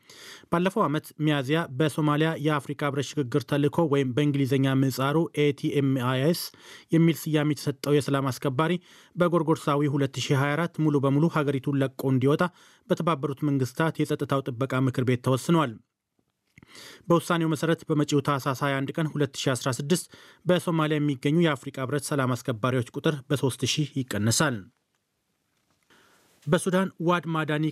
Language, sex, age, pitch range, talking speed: Amharic, male, 30-49, 140-160 Hz, 105 wpm